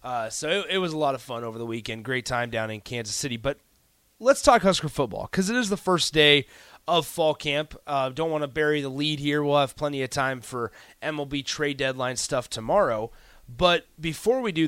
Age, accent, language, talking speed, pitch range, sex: 30-49, American, English, 225 wpm, 130-165 Hz, male